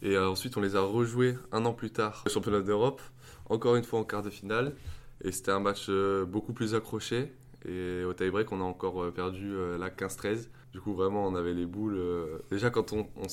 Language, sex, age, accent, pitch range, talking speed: French, male, 20-39, French, 90-105 Hz, 210 wpm